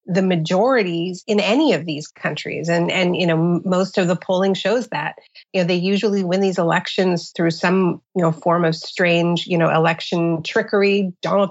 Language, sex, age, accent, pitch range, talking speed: English, female, 40-59, American, 170-200 Hz, 190 wpm